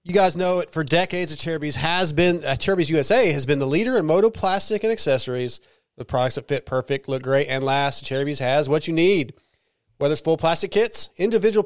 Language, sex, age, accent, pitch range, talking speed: English, male, 30-49, American, 135-175 Hz, 220 wpm